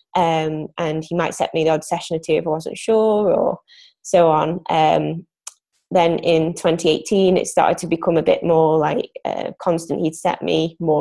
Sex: female